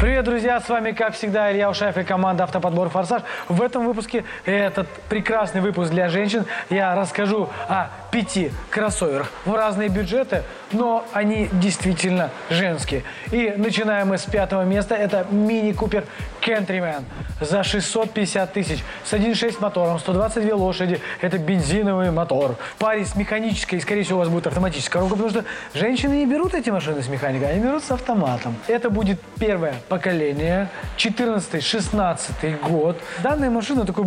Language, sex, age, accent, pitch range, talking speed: Russian, male, 20-39, native, 180-220 Hz, 150 wpm